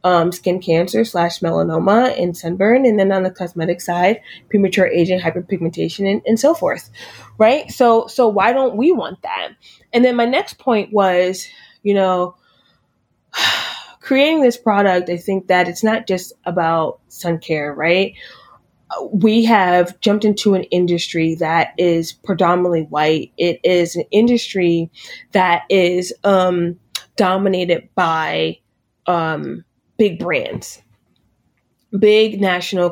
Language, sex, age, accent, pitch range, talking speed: English, female, 20-39, American, 170-205 Hz, 135 wpm